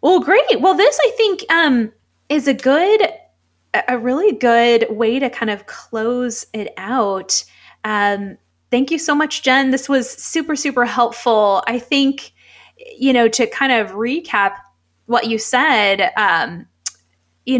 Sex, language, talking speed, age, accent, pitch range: female, English, 150 wpm, 20-39, American, 210-250 Hz